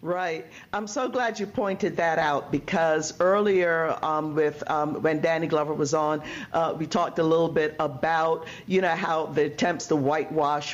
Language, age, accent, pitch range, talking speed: English, 50-69, American, 160-210 Hz, 180 wpm